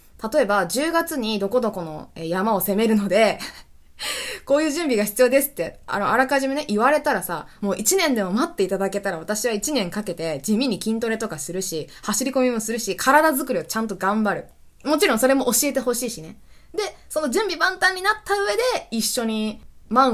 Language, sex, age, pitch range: Japanese, female, 20-39, 185-275 Hz